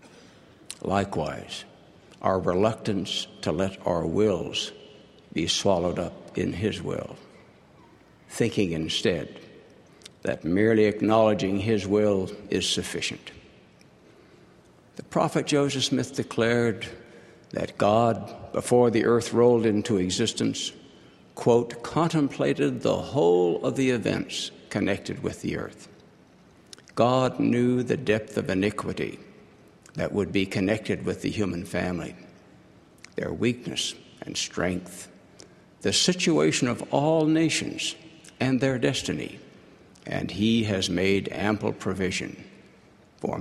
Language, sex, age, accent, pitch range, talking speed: English, male, 60-79, American, 95-130 Hz, 110 wpm